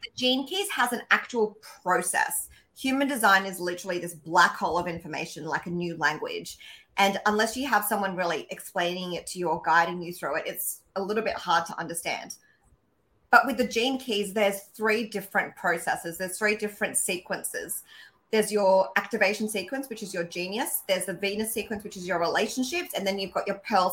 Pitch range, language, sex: 185-225 Hz, English, female